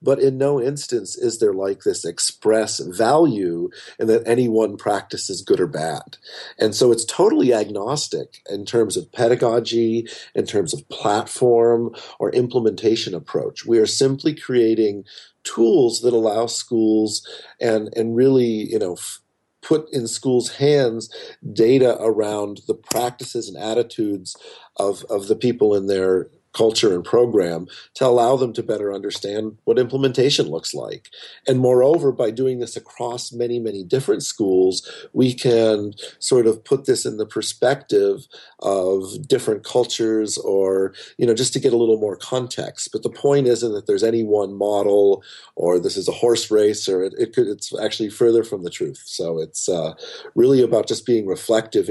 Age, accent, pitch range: 40-59, American, 105-135 Hz